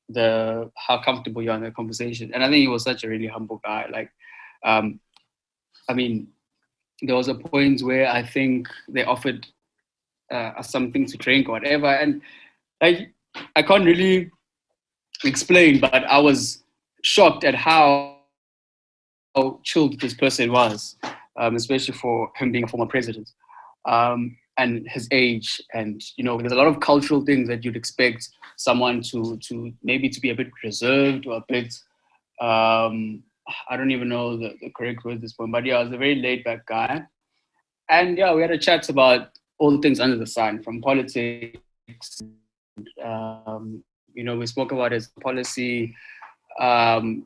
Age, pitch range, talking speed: 20-39, 115-135 Hz, 170 wpm